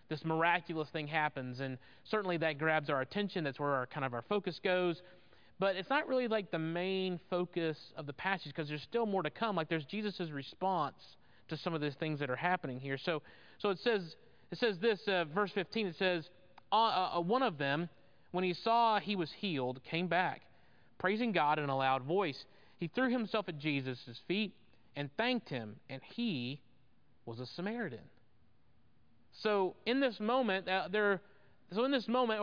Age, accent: 30-49, American